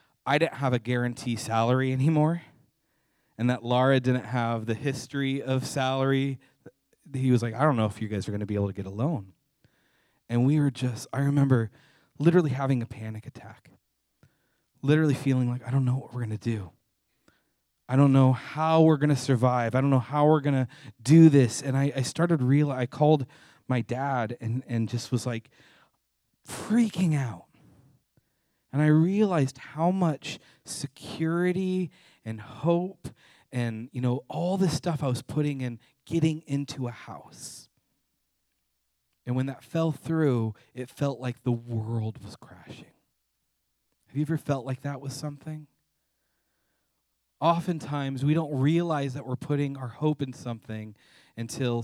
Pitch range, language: 115-150 Hz, English